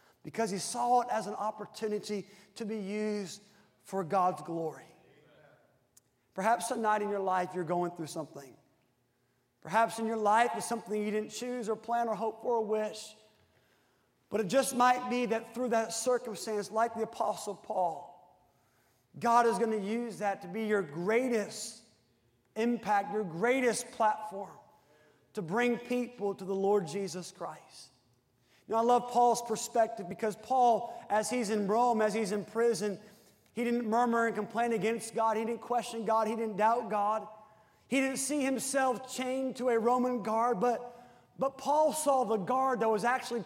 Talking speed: 165 wpm